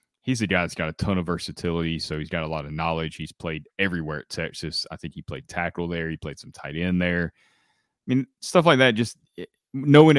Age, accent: 30-49, American